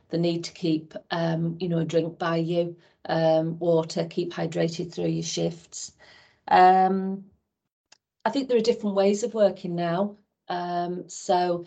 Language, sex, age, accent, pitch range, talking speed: English, female, 40-59, British, 165-185 Hz, 155 wpm